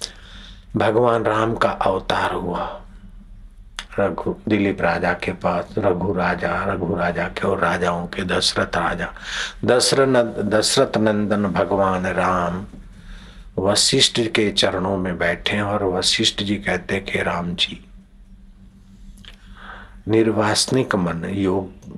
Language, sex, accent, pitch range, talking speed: Hindi, male, native, 95-110 Hz, 110 wpm